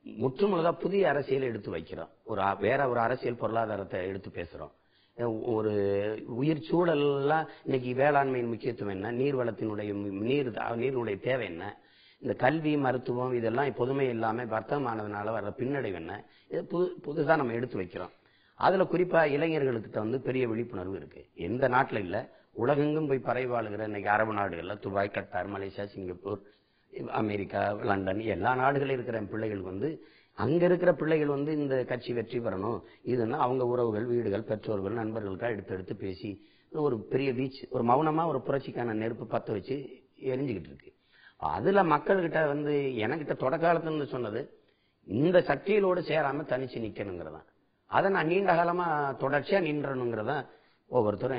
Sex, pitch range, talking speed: male, 110-150 Hz, 130 wpm